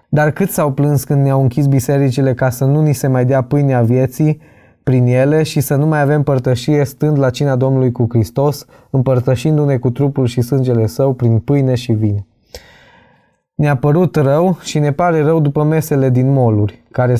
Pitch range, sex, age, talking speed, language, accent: 120-145 Hz, male, 20-39, 185 wpm, Romanian, native